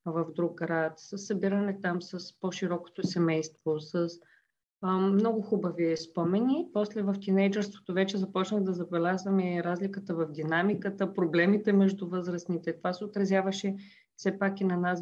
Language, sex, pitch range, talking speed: Bulgarian, female, 180-210 Hz, 145 wpm